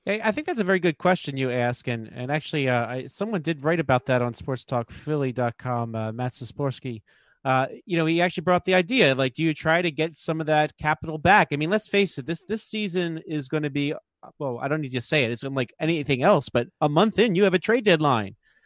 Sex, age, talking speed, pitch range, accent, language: male, 40-59, 250 wpm, 135-175 Hz, American, English